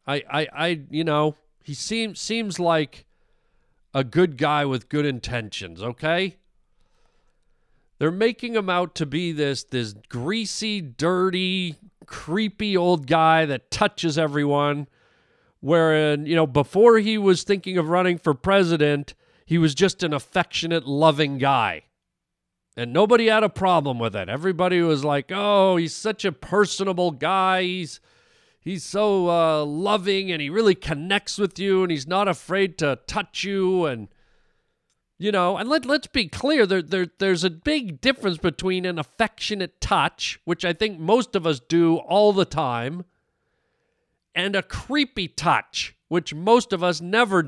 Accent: American